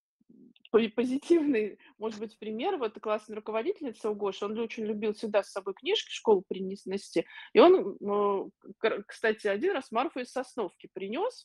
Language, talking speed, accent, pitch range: Russian, 135 wpm, native, 215-285 Hz